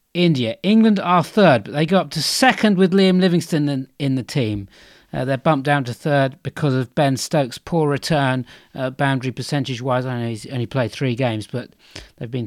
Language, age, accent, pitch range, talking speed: English, 40-59, British, 130-165 Hz, 195 wpm